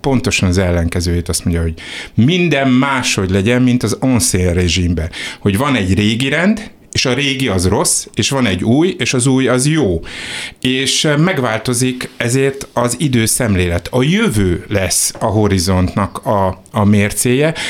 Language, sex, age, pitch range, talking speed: Hungarian, male, 60-79, 95-135 Hz, 150 wpm